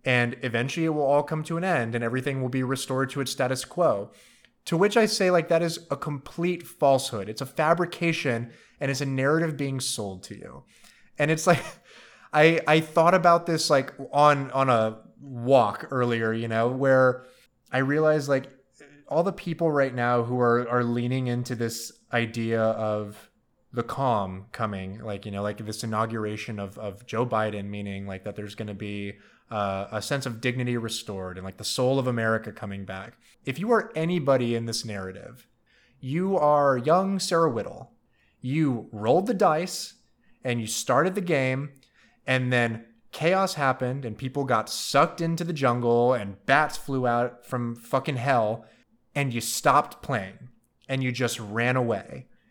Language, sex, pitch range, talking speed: English, male, 115-145 Hz, 175 wpm